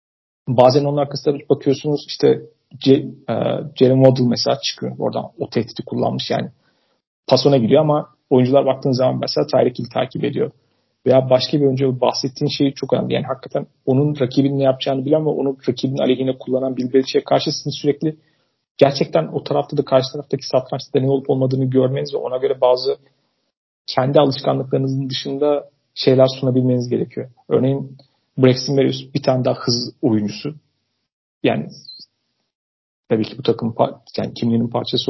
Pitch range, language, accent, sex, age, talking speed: 130-155 Hz, Turkish, native, male, 40-59, 150 wpm